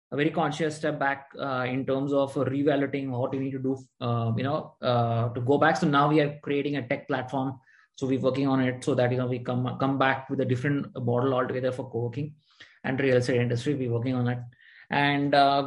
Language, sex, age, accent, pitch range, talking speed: English, male, 20-39, Indian, 130-165 Hz, 230 wpm